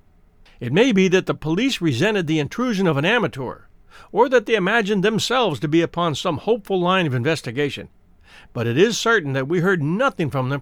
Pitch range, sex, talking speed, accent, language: 130-195 Hz, male, 200 wpm, American, English